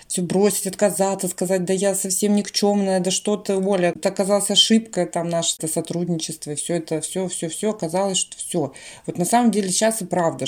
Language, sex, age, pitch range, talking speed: Russian, female, 30-49, 155-195 Hz, 190 wpm